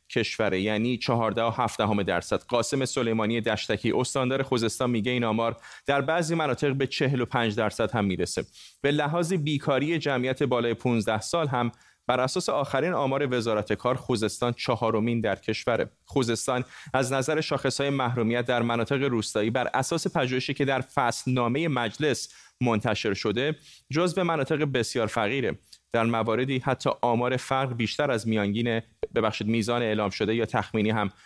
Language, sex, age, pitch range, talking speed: Persian, male, 30-49, 110-135 Hz, 150 wpm